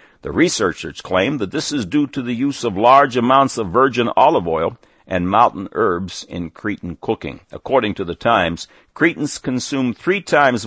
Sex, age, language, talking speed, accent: male, 60-79, English, 175 wpm, American